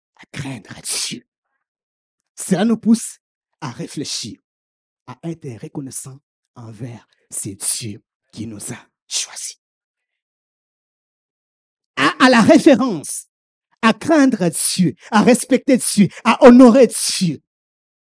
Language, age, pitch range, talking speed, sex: French, 50-69, 170-245 Hz, 100 wpm, male